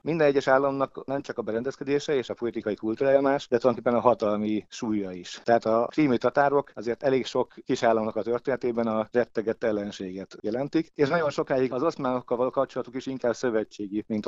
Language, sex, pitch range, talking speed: Hungarian, male, 105-135 Hz, 185 wpm